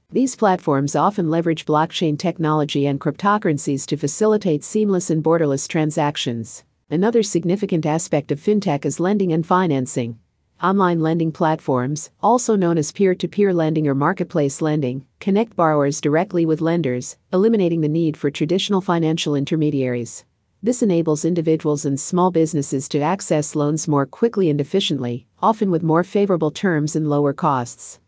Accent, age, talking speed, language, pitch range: American, 50-69, 145 wpm, English, 145-180 Hz